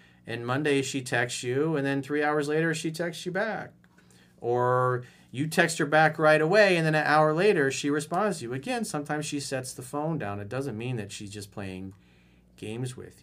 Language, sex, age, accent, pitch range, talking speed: English, male, 40-59, American, 95-150 Hz, 210 wpm